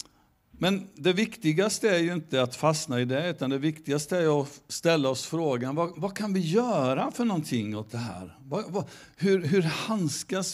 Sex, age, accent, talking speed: male, 60-79, native, 175 wpm